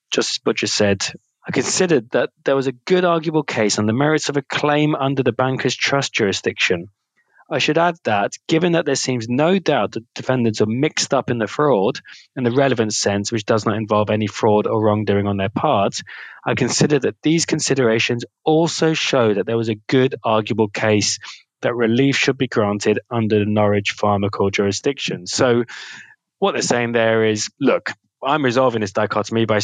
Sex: male